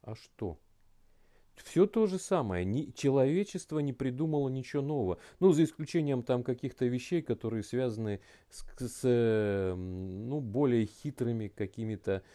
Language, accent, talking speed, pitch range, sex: Russian, native, 120 wpm, 100-135 Hz, male